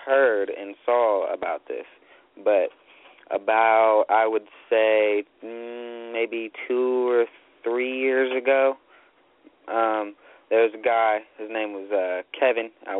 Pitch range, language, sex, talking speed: 100-115 Hz, English, male, 125 wpm